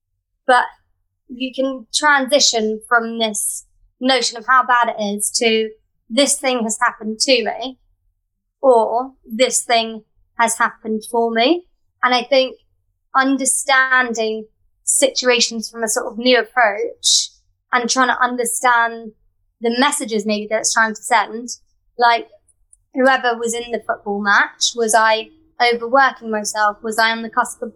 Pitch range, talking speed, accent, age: 215-250 Hz, 145 wpm, British, 20-39